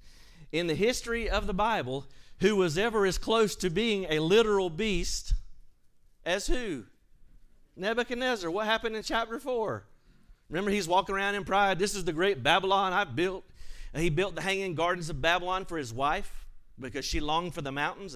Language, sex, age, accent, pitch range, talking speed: English, male, 40-59, American, 130-190 Hz, 180 wpm